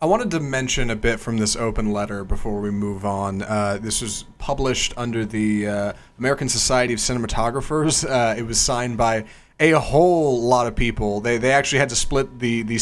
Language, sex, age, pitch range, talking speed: English, male, 30-49, 110-135 Hz, 200 wpm